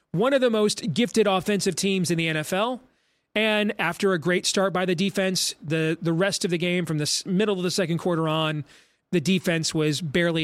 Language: English